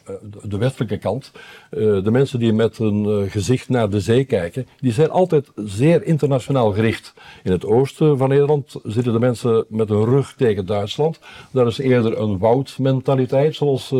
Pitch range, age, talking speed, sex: 105-135 Hz, 60-79, 165 wpm, male